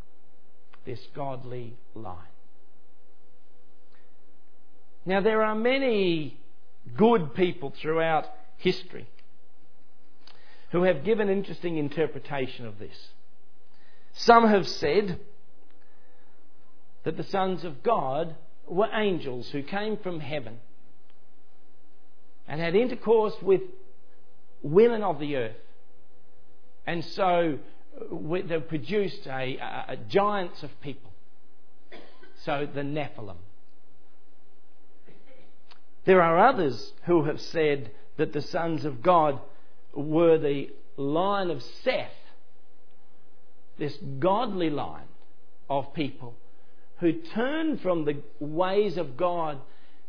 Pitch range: 125-180 Hz